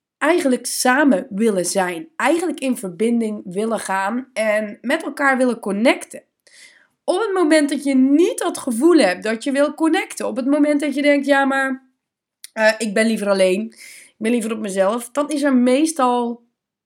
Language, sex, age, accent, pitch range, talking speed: Dutch, female, 20-39, Dutch, 205-275 Hz, 175 wpm